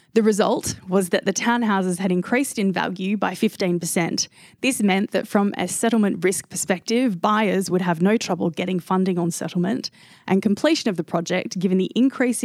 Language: English